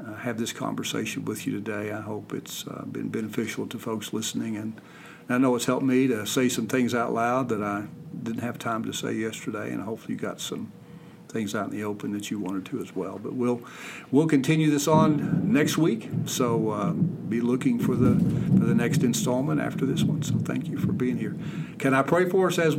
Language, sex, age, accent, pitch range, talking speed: English, male, 50-69, American, 105-130 Hz, 225 wpm